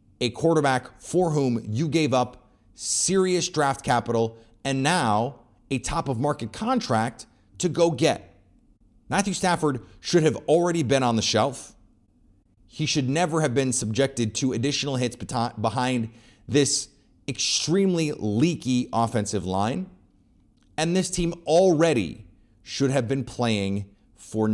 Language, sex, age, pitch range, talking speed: English, male, 30-49, 105-140 Hz, 125 wpm